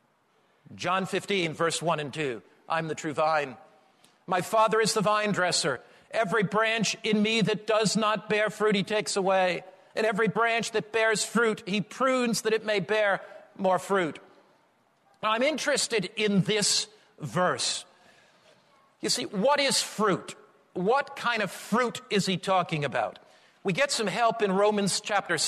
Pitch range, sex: 185-225 Hz, male